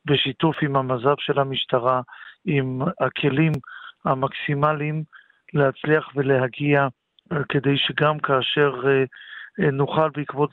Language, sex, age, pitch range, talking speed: Hebrew, male, 50-69, 145-175 Hz, 95 wpm